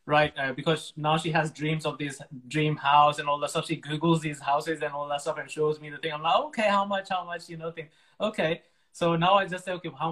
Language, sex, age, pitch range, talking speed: English, male, 20-39, 150-170 Hz, 265 wpm